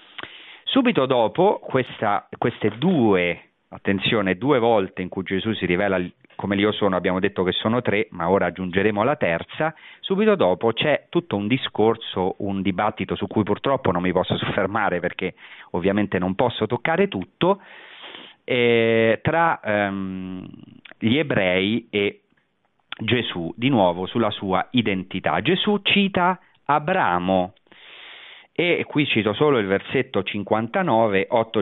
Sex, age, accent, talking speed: male, 40-59, native, 130 wpm